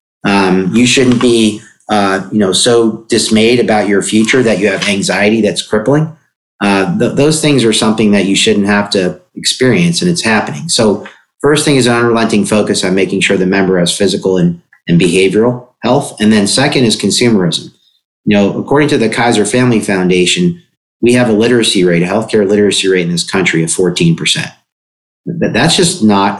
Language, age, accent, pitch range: English, 40-59, American, 95-125 Hz